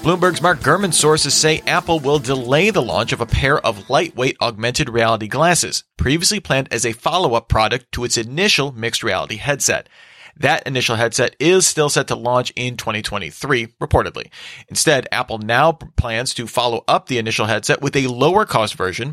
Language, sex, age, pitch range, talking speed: English, male, 40-59, 115-140 Hz, 175 wpm